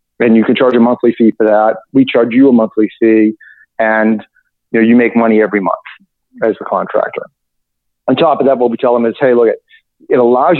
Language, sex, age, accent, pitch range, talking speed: English, male, 40-59, American, 115-140 Hz, 225 wpm